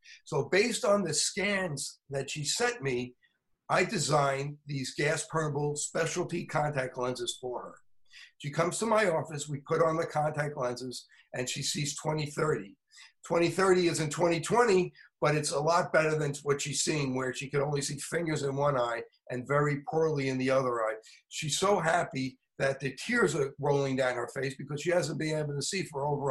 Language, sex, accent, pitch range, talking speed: English, male, American, 140-165 Hz, 190 wpm